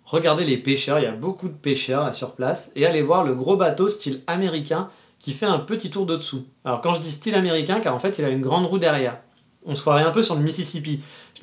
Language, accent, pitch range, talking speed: French, French, 130-165 Hz, 265 wpm